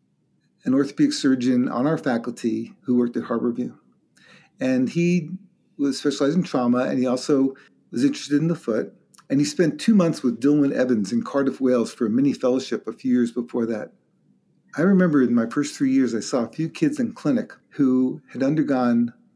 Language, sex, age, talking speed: English, male, 50-69, 190 wpm